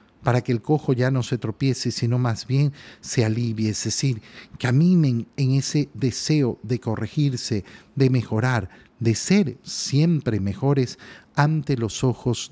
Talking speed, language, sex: 145 wpm, Spanish, male